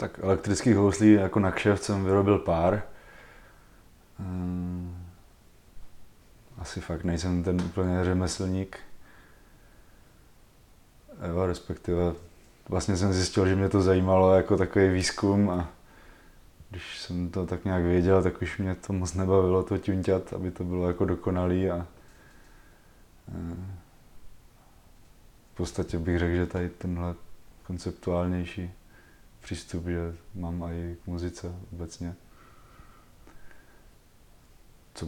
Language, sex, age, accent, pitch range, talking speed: Czech, male, 20-39, native, 85-95 Hz, 110 wpm